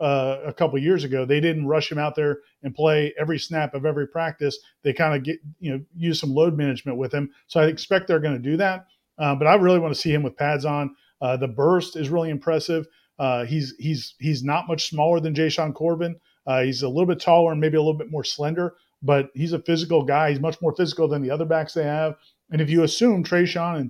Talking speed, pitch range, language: 255 wpm, 145-170 Hz, English